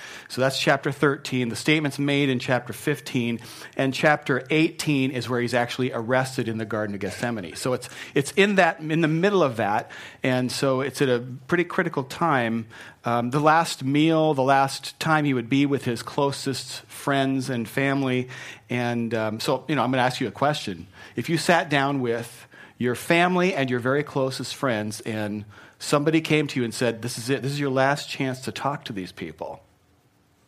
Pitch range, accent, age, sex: 120-150 Hz, American, 40-59, male